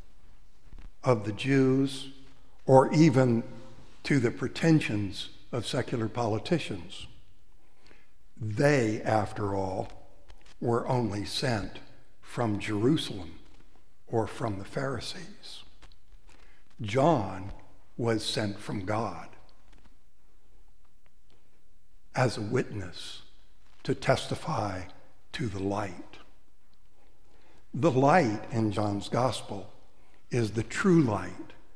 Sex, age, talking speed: male, 60-79, 85 wpm